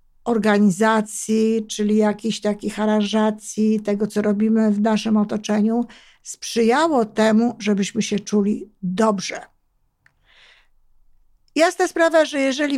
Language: Polish